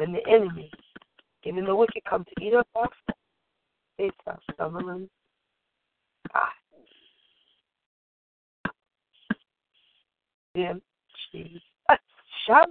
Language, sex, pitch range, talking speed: English, female, 225-335 Hz, 70 wpm